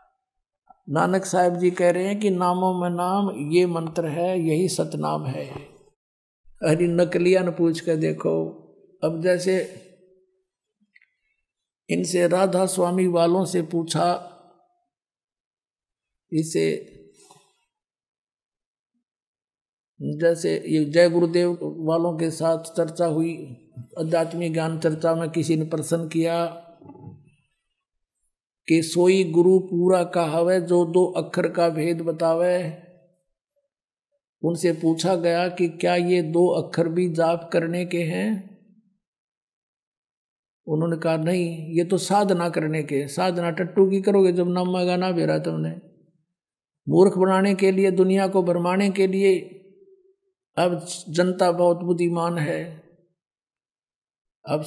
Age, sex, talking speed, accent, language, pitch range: 50-69, male, 115 wpm, native, Hindi, 165-185 Hz